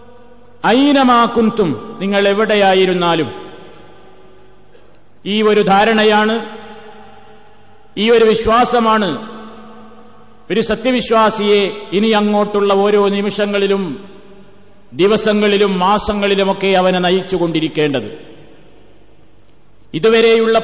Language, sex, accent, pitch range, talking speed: Malayalam, male, native, 210-240 Hz, 55 wpm